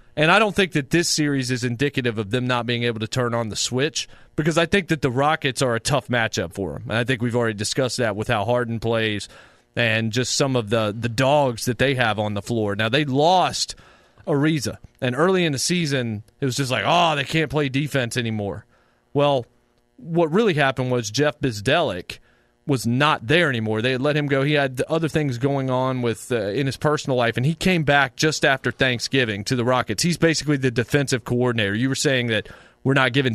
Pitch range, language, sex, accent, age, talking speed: 120-150 Hz, English, male, American, 30-49, 225 wpm